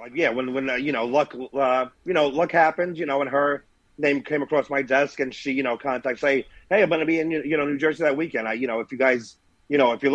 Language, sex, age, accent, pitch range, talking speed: English, male, 40-59, American, 115-145 Hz, 295 wpm